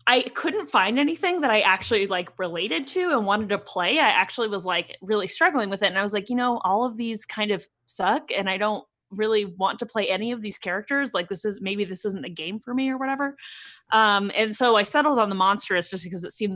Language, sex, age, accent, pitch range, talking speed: English, female, 20-39, American, 175-215 Hz, 250 wpm